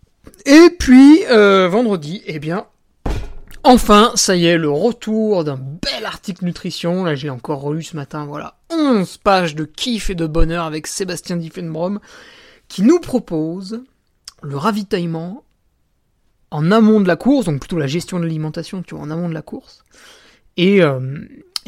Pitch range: 165-220 Hz